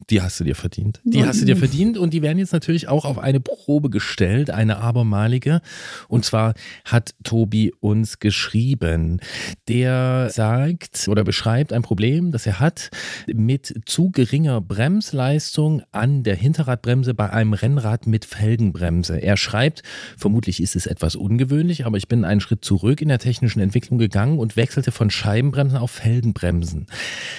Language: German